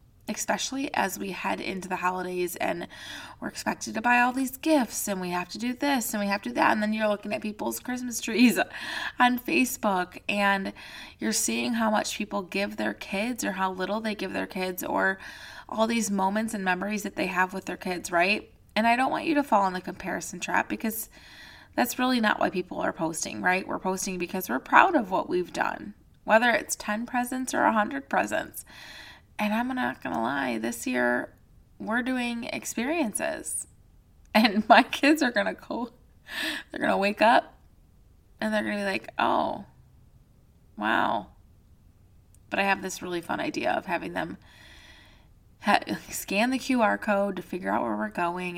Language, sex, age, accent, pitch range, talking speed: English, female, 20-39, American, 175-235 Hz, 190 wpm